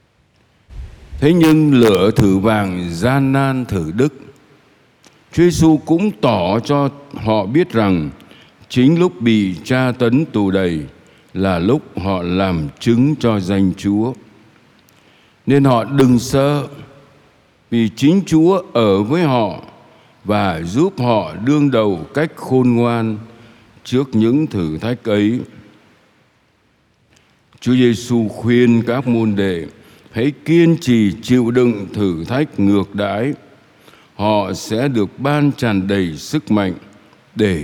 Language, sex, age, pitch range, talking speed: Vietnamese, male, 60-79, 100-135 Hz, 125 wpm